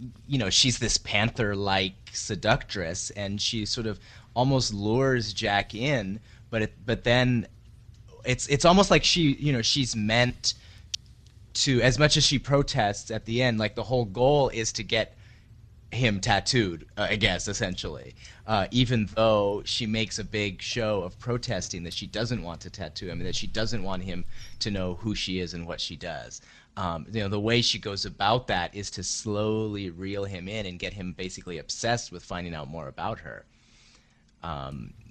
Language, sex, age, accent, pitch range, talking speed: English, male, 30-49, American, 90-115 Hz, 185 wpm